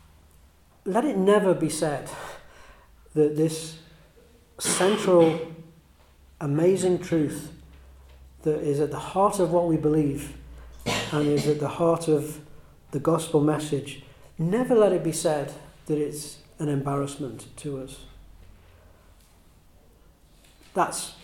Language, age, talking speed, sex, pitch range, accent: English, 40-59, 115 wpm, male, 135-155 Hz, British